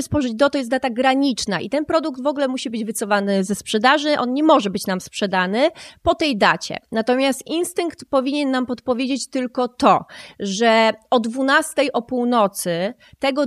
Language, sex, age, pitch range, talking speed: Polish, female, 30-49, 220-265 Hz, 170 wpm